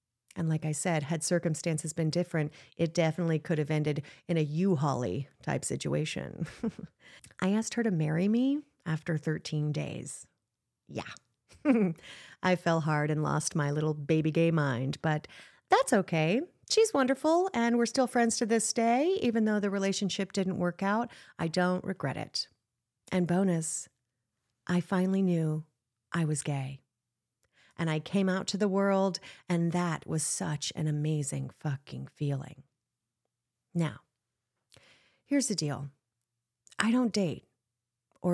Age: 30-49